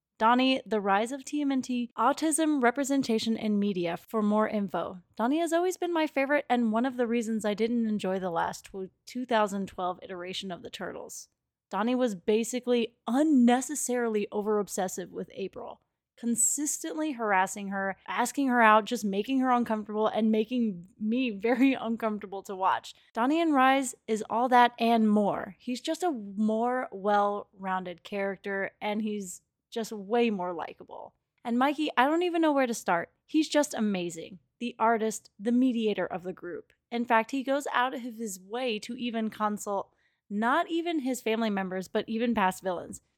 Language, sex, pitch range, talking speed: English, female, 200-255 Hz, 160 wpm